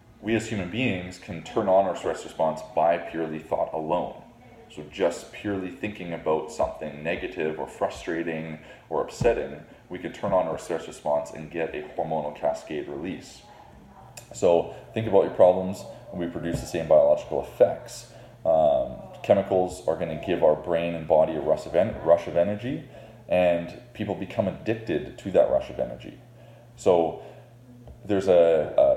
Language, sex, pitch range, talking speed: English, male, 80-110 Hz, 165 wpm